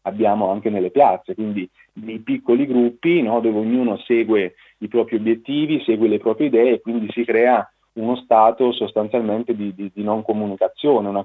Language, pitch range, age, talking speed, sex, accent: Italian, 105-125 Hz, 30-49, 170 wpm, male, native